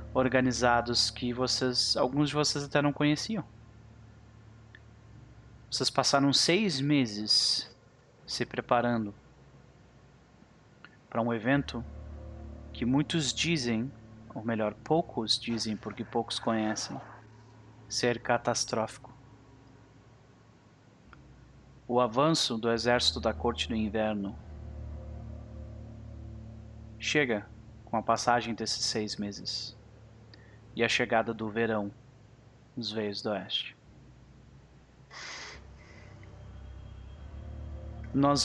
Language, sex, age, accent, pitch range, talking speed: Portuguese, male, 30-49, Brazilian, 110-130 Hz, 85 wpm